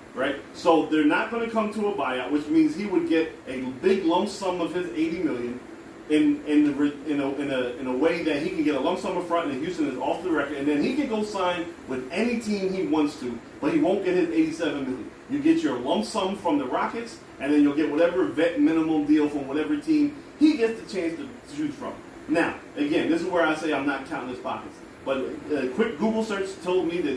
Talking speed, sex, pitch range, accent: 250 wpm, male, 150-245 Hz, American